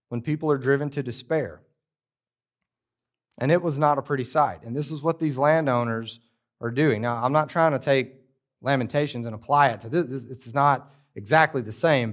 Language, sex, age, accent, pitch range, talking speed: English, male, 30-49, American, 120-155 Hz, 190 wpm